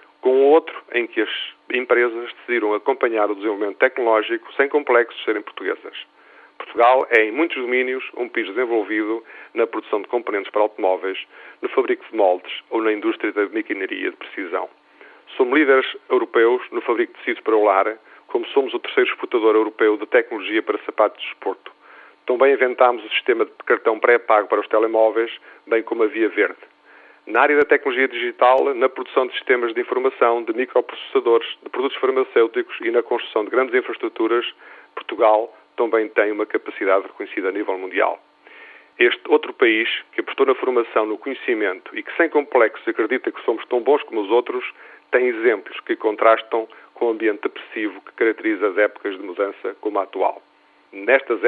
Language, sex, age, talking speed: Portuguese, male, 40-59, 175 wpm